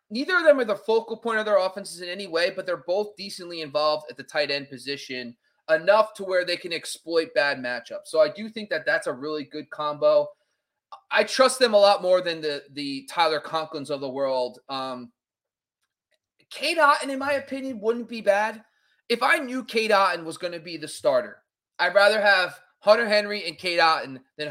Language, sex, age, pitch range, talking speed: English, male, 30-49, 145-235 Hz, 205 wpm